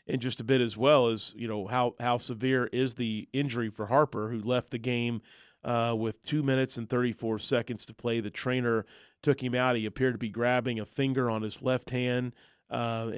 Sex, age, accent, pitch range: male, 30-49, American, 110-130 Hz